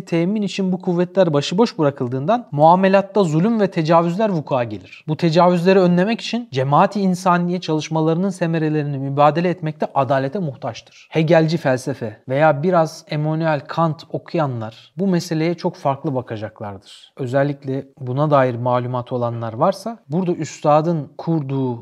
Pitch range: 140-185 Hz